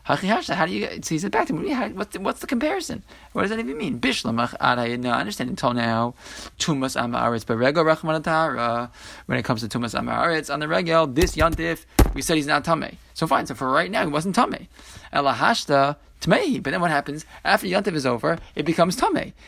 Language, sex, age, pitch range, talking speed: English, male, 20-39, 120-160 Hz, 195 wpm